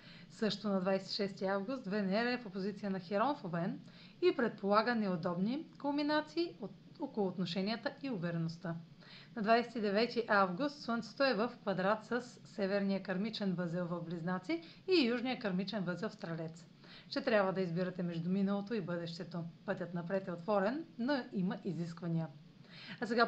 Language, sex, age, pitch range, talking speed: Bulgarian, female, 30-49, 180-225 Hz, 150 wpm